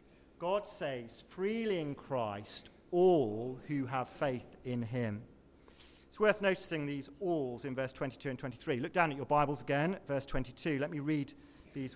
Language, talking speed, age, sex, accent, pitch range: English, 165 wpm, 40-59, male, British, 125-180 Hz